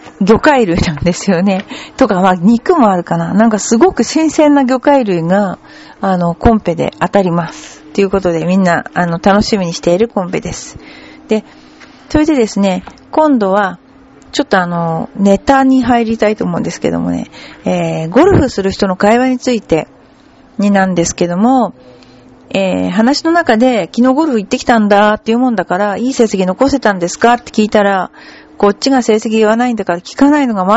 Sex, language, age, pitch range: female, Japanese, 40-59, 180-260 Hz